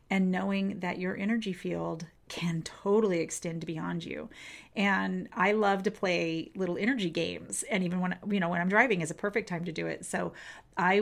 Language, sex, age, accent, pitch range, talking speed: English, female, 30-49, American, 170-210 Hz, 195 wpm